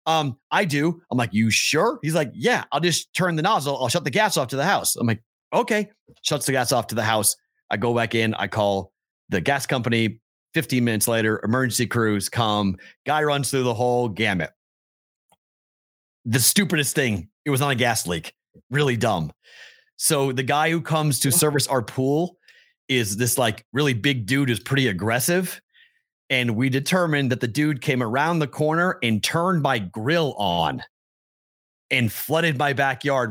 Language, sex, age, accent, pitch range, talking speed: English, male, 30-49, American, 115-150 Hz, 185 wpm